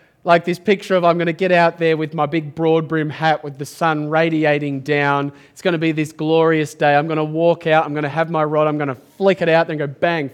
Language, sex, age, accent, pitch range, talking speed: English, male, 20-39, Australian, 150-180 Hz, 275 wpm